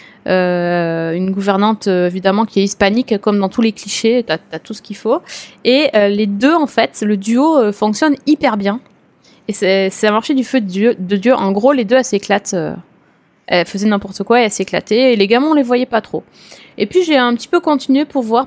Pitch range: 200-260 Hz